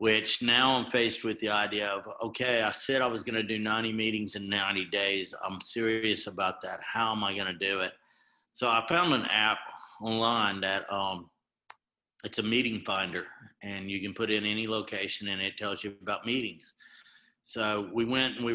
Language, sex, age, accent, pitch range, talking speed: English, male, 50-69, American, 100-115 Hz, 195 wpm